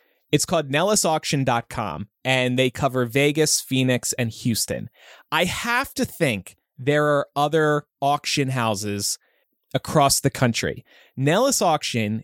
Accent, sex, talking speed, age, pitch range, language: American, male, 120 wpm, 30-49, 130-190 Hz, English